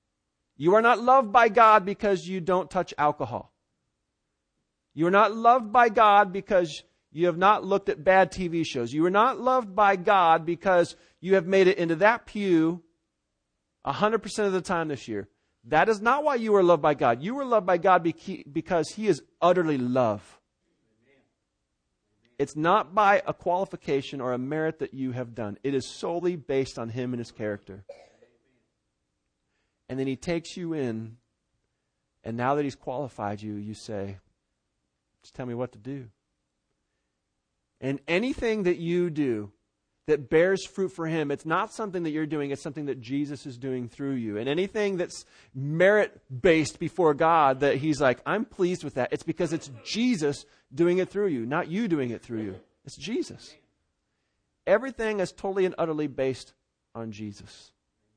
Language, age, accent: English, 40-59, American